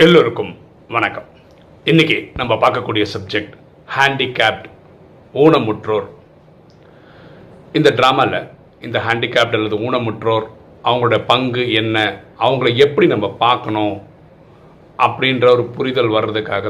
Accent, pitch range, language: native, 110-150 Hz, Tamil